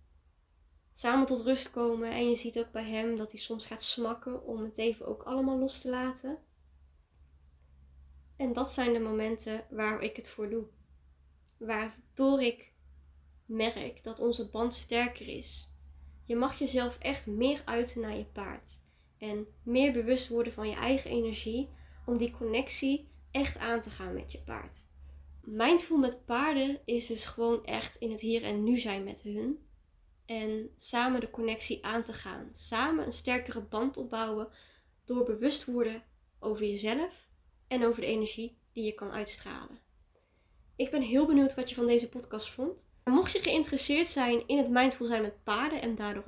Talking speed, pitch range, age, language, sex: 170 wpm, 215-265 Hz, 20-39, Dutch, female